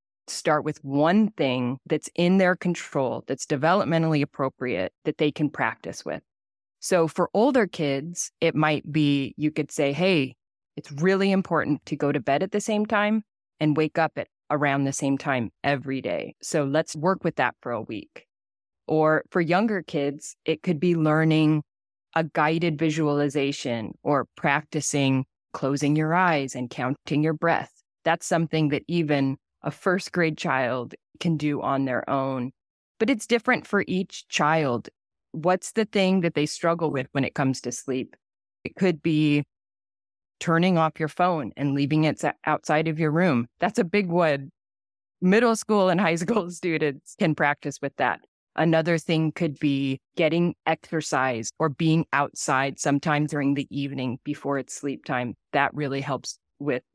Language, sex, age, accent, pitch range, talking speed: English, female, 20-39, American, 140-170 Hz, 165 wpm